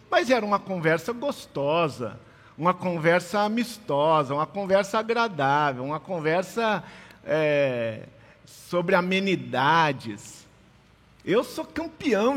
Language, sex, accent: Portuguese, male, Brazilian